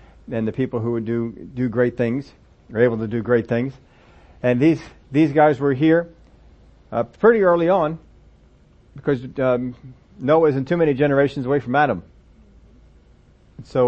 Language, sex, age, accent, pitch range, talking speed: English, male, 50-69, American, 115-150 Hz, 155 wpm